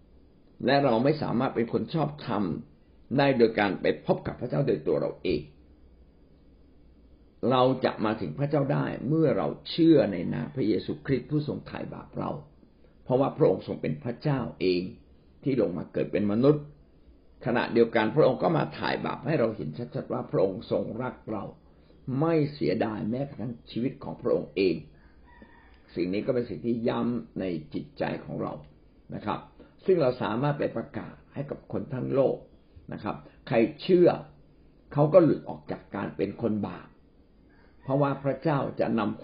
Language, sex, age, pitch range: Thai, male, 60-79, 95-145 Hz